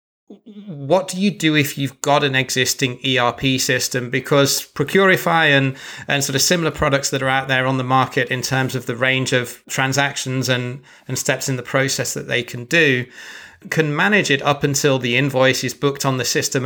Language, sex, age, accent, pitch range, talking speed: English, male, 30-49, British, 125-140 Hz, 200 wpm